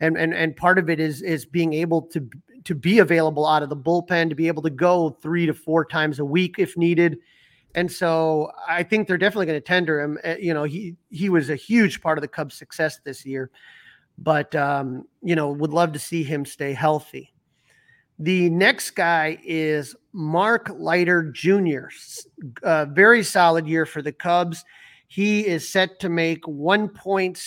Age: 40-59